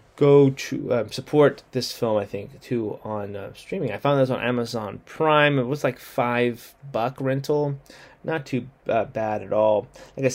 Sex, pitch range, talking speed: male, 120-145 Hz, 185 wpm